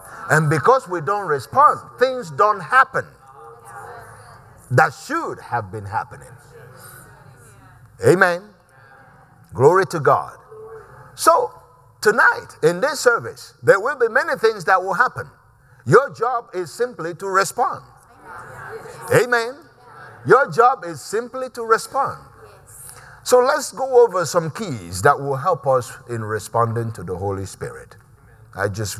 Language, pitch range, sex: English, 120-190 Hz, male